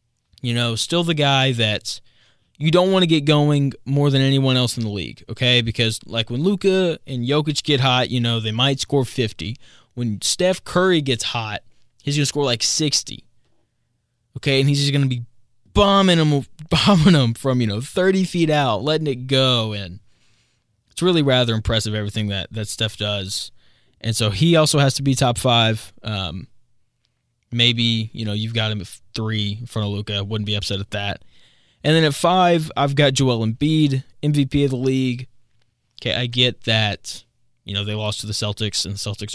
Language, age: English, 20-39